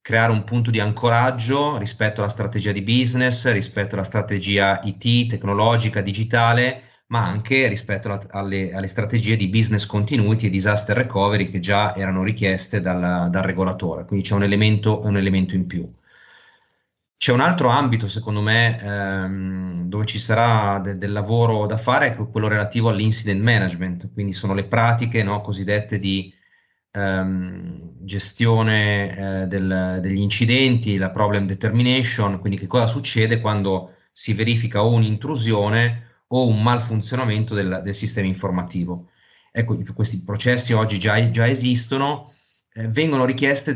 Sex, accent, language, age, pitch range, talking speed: male, native, Italian, 30-49, 100-120 Hz, 140 wpm